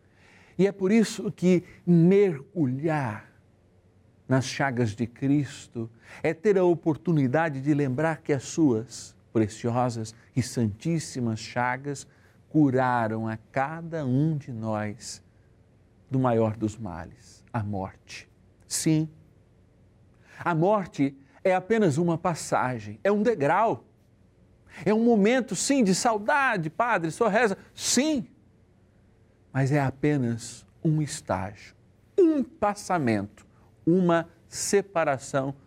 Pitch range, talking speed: 110-165 Hz, 110 wpm